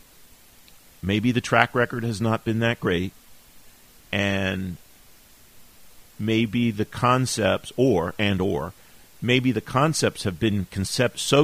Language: English